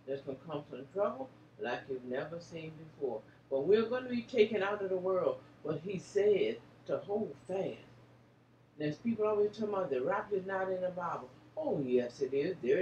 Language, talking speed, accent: English, 205 wpm, American